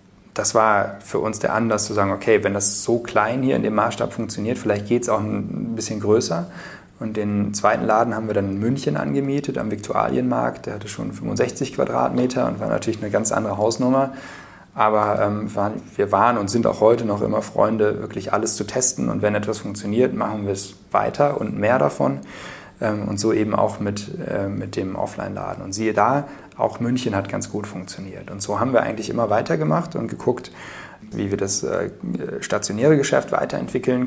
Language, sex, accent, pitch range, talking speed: German, male, German, 100-115 Hz, 190 wpm